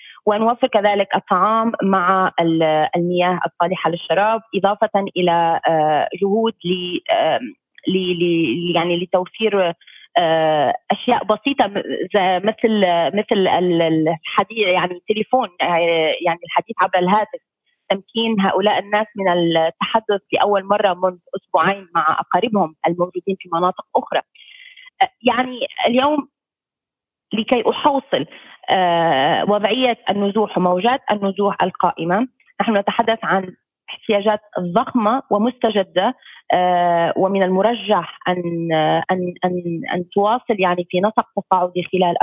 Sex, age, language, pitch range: female, 20-39, Arabic, 175-225 Hz